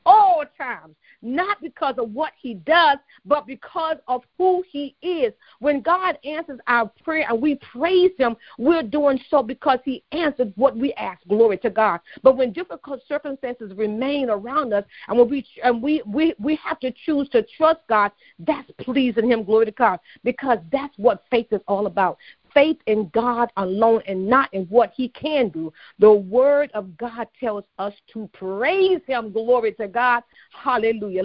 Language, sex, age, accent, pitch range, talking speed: English, female, 40-59, American, 215-280 Hz, 175 wpm